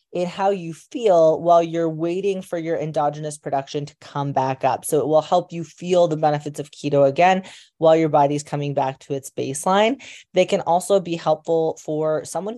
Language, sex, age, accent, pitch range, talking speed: English, female, 20-39, American, 145-165 Hz, 195 wpm